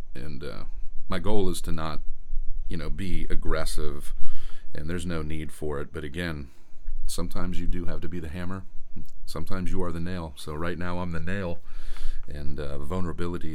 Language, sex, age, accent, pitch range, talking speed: English, male, 40-59, American, 75-90 Hz, 180 wpm